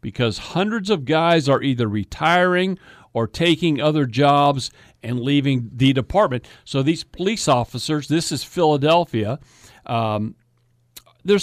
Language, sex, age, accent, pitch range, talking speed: English, male, 50-69, American, 120-185 Hz, 125 wpm